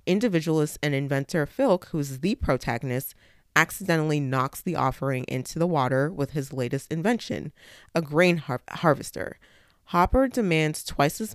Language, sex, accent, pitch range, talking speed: English, female, American, 130-165 Hz, 130 wpm